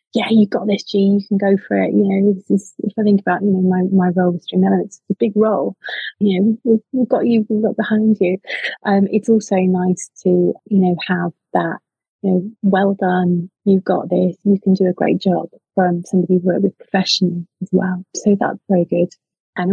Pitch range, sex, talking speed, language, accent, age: 175-200 Hz, female, 230 wpm, English, British, 30-49